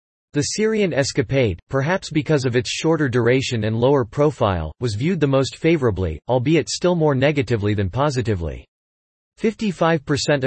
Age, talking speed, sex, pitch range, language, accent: 40-59, 140 wpm, male, 115-150 Hz, English, American